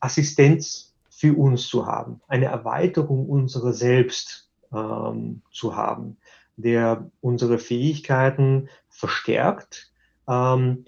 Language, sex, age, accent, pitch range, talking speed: German, male, 30-49, German, 120-150 Hz, 95 wpm